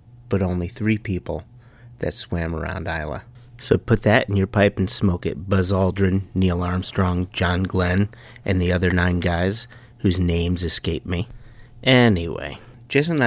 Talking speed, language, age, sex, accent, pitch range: 160 wpm, English, 30-49, male, American, 90-120 Hz